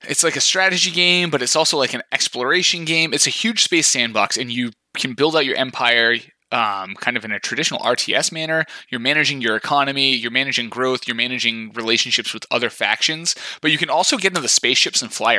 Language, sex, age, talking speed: English, male, 20-39, 215 wpm